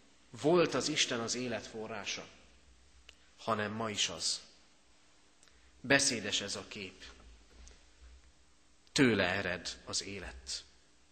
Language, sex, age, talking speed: Hungarian, male, 30-49, 95 wpm